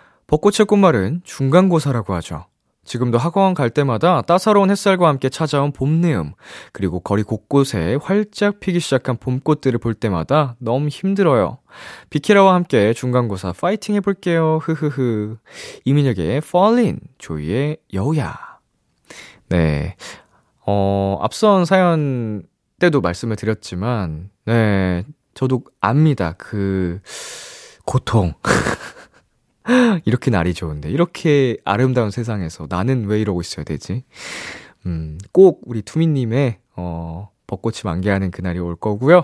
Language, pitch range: Korean, 100-165 Hz